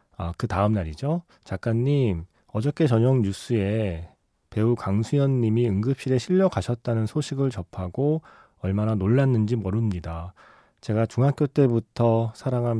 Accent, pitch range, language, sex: native, 100-135 Hz, Korean, male